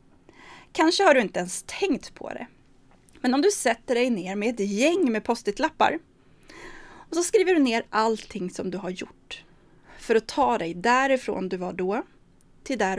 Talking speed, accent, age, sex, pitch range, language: 180 wpm, native, 30-49, female, 200-295 Hz, Swedish